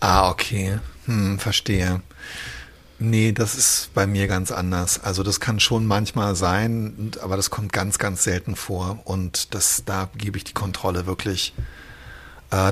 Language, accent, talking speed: German, German, 155 wpm